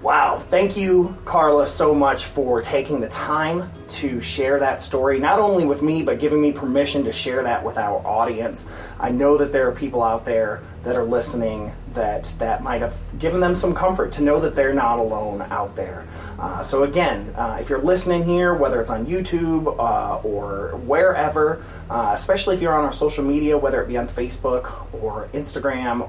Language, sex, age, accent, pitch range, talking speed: English, male, 30-49, American, 125-175 Hz, 195 wpm